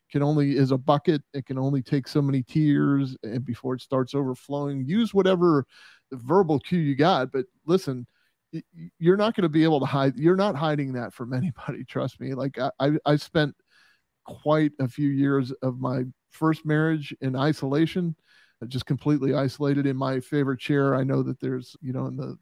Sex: male